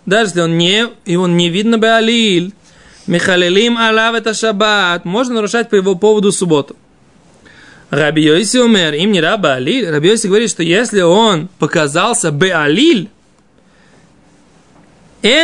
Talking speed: 125 wpm